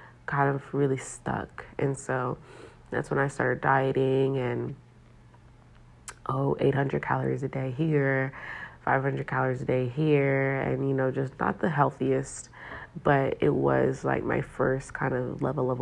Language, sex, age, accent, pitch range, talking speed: English, female, 30-49, American, 125-145 Hz, 150 wpm